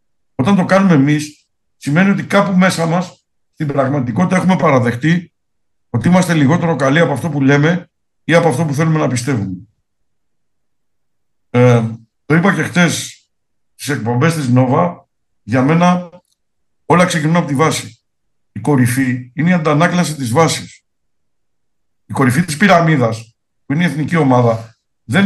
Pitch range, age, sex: 125-175 Hz, 60-79, male